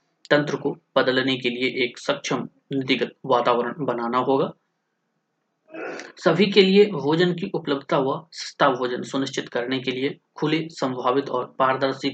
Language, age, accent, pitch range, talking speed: Hindi, 20-39, native, 130-165 Hz, 125 wpm